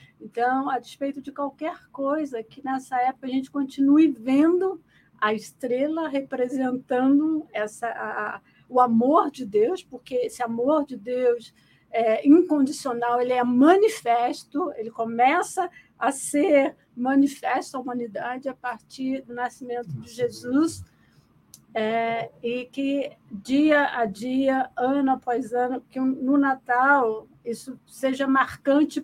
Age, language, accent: 50-69, Portuguese, Brazilian